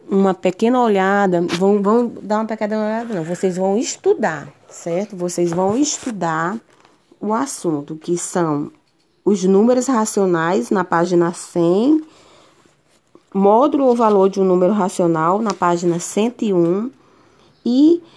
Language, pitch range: Portuguese, 170-225 Hz